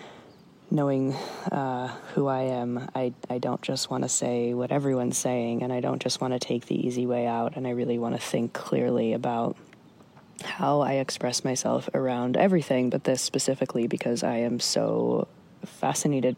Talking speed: 175 wpm